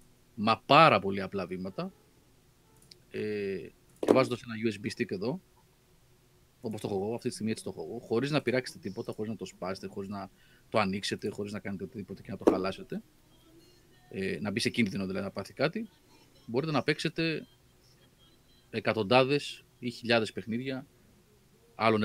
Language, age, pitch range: Greek, 30-49, 110-150 Hz